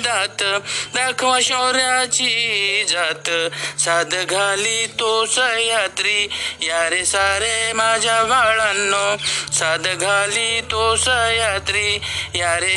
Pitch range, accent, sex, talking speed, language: 200-255 Hz, native, male, 85 wpm, Marathi